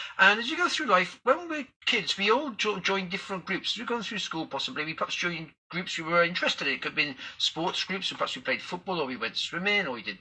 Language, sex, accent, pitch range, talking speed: English, male, British, 180-235 Hz, 265 wpm